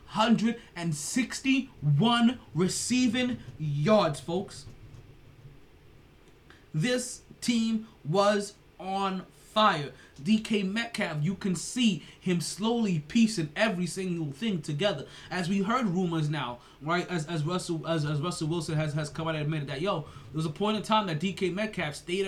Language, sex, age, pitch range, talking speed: English, male, 20-39, 155-205 Hz, 145 wpm